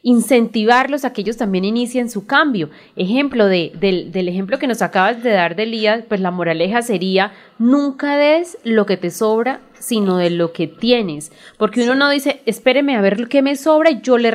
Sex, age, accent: female, 30-49, Colombian